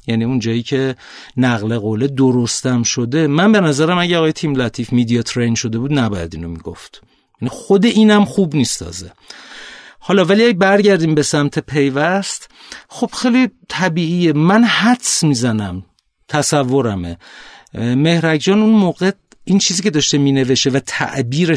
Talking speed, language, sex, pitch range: 140 wpm, Persian, male, 115-165 Hz